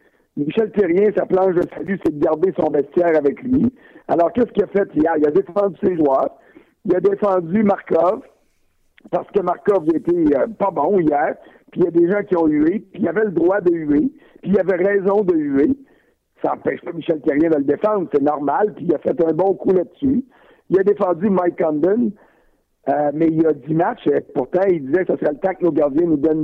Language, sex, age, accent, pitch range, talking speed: French, male, 60-79, French, 165-210 Hz, 230 wpm